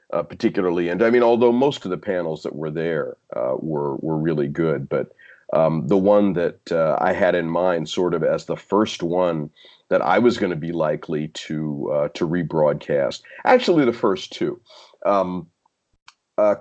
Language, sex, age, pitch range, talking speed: English, male, 40-59, 80-105 Hz, 185 wpm